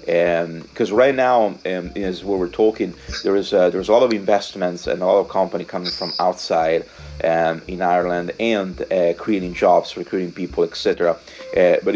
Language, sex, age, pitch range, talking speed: English, male, 30-49, 85-115 Hz, 185 wpm